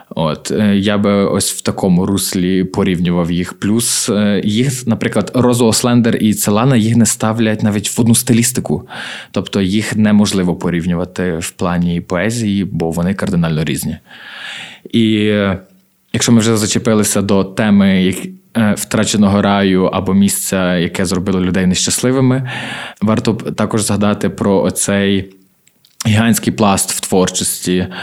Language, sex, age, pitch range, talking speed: Ukrainian, male, 20-39, 95-115 Hz, 125 wpm